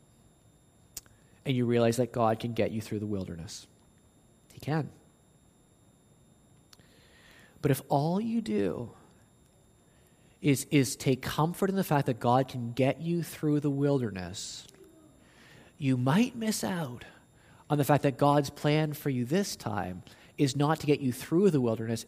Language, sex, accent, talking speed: English, male, American, 150 wpm